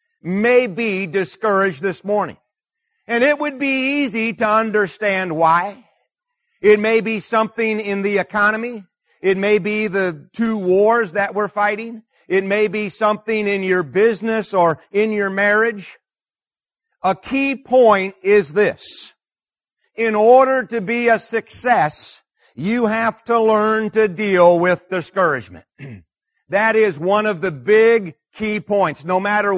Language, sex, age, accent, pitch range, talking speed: English, male, 40-59, American, 190-225 Hz, 140 wpm